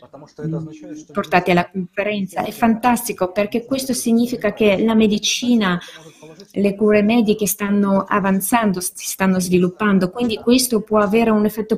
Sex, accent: female, native